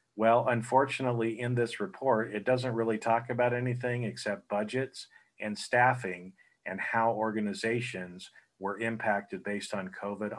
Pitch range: 105-125 Hz